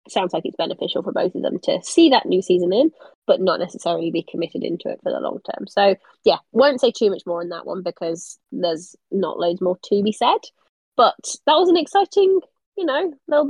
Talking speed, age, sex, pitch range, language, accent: 225 wpm, 20-39, female, 185-255 Hz, English, British